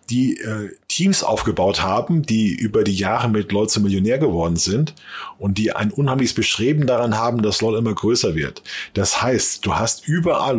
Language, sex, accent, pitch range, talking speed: German, male, German, 110-155 Hz, 180 wpm